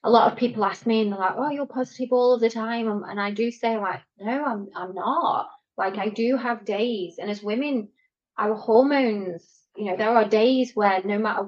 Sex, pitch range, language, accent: female, 195-230 Hz, English, British